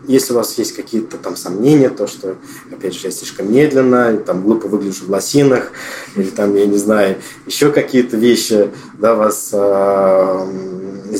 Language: Russian